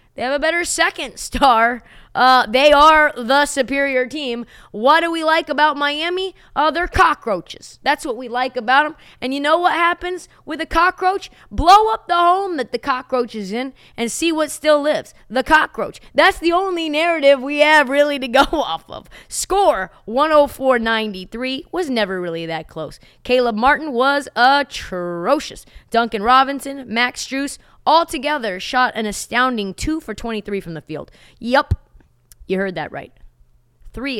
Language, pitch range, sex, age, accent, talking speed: English, 220-300 Hz, female, 20-39, American, 165 wpm